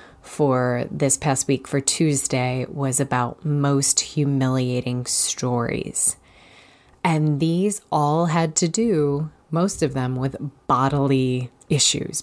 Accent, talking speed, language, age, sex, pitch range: American, 115 wpm, English, 20-39, female, 130-160 Hz